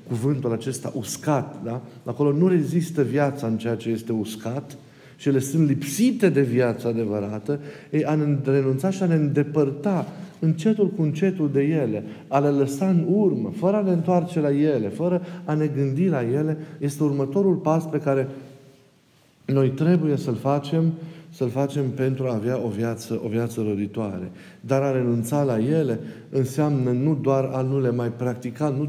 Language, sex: Romanian, male